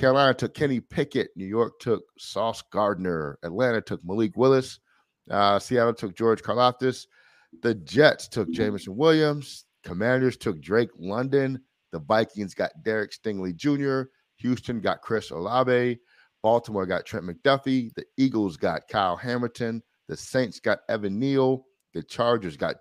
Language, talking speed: English, 140 wpm